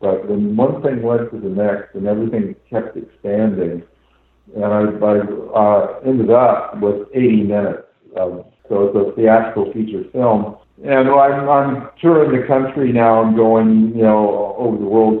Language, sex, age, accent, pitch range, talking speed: English, male, 60-79, American, 95-115 Hz, 165 wpm